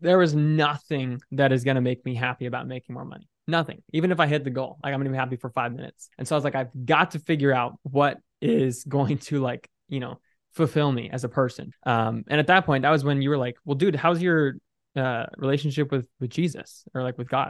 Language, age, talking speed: English, 20-39, 260 wpm